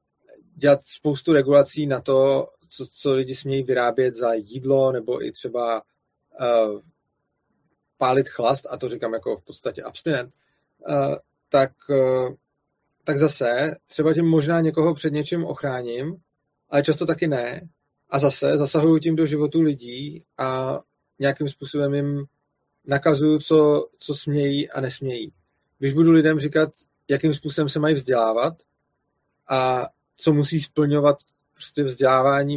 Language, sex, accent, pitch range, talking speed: Czech, male, native, 135-150 Hz, 125 wpm